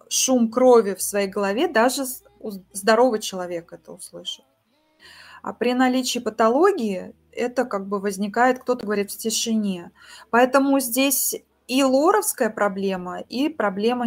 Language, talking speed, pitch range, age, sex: Russian, 125 wpm, 205-260 Hz, 20-39, female